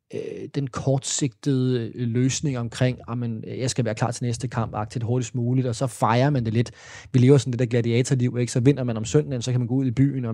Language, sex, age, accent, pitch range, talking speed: Danish, male, 30-49, native, 120-145 Hz, 240 wpm